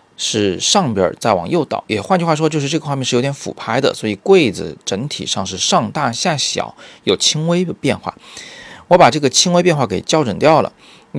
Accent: native